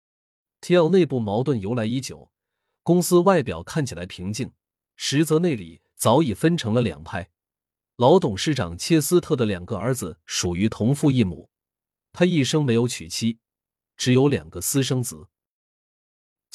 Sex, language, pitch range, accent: male, Chinese, 100-155 Hz, native